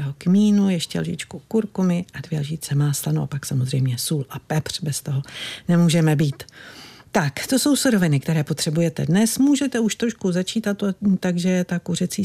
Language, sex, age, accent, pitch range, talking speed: Czech, female, 50-69, native, 155-190 Hz, 160 wpm